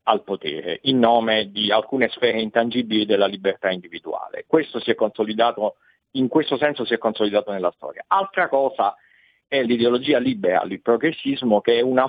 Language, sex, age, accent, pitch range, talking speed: Italian, male, 50-69, native, 110-150 Hz, 165 wpm